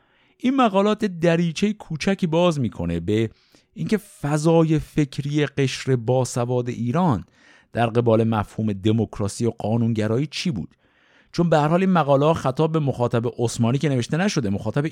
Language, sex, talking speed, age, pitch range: Persian, male, 135 wpm, 50-69, 115-170 Hz